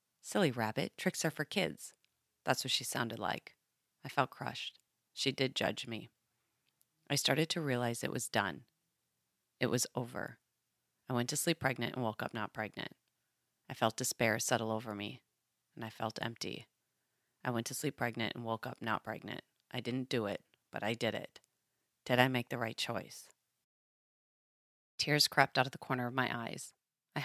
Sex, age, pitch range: female, 30-49, 120-140 Hz